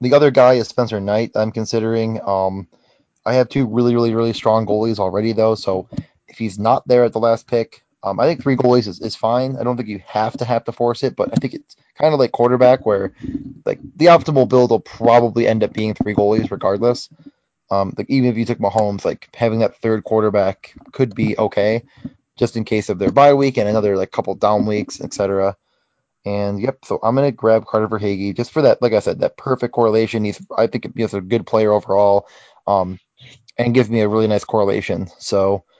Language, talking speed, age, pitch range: English, 220 wpm, 20-39, 105-120 Hz